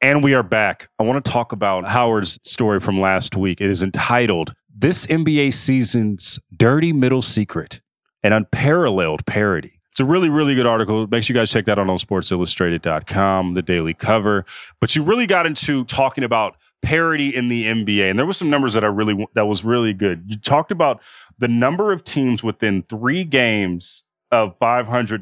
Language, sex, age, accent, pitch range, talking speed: English, male, 30-49, American, 95-125 Hz, 190 wpm